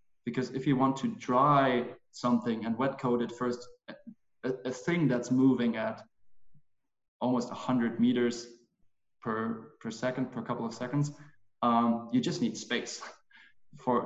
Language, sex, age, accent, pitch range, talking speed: English, male, 20-39, German, 120-150 Hz, 145 wpm